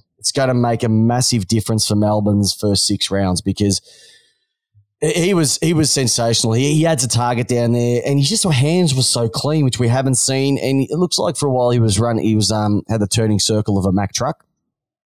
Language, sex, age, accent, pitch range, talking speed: English, male, 20-39, Australian, 105-140 Hz, 225 wpm